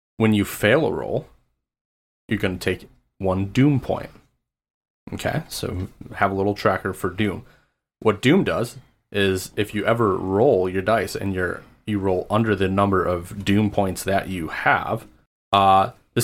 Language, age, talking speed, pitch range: English, 20-39, 165 wpm, 95-115 Hz